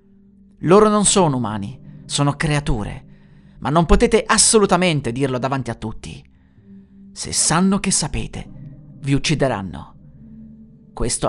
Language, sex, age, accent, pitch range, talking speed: Italian, male, 30-49, native, 135-190 Hz, 110 wpm